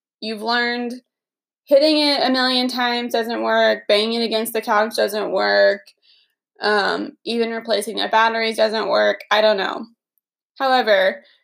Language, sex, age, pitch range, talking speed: English, female, 20-39, 210-255 Hz, 140 wpm